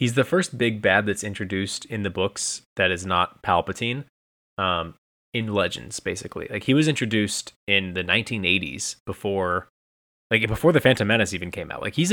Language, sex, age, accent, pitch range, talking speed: English, male, 20-39, American, 90-115 Hz, 180 wpm